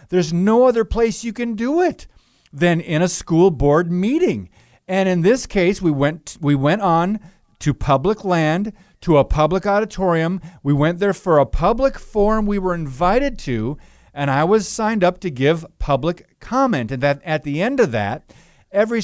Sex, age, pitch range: male, 50-69, 145-200 Hz